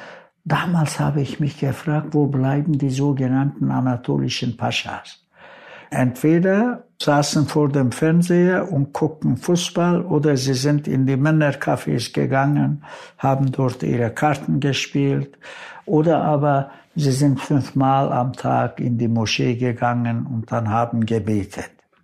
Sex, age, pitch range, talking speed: male, 60-79, 125-150 Hz, 125 wpm